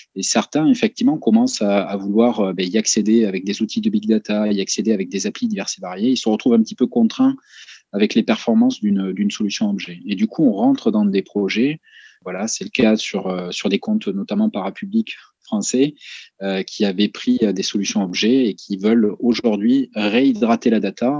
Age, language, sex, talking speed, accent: 20-39, French, male, 205 wpm, French